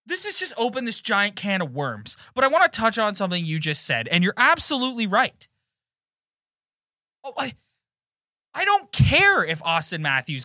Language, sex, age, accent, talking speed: English, male, 30-49, American, 180 wpm